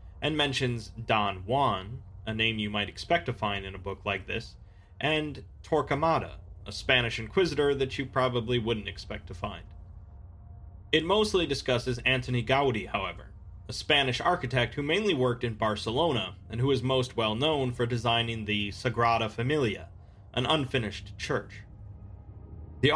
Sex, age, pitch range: male, 30-49, 100-130 Hz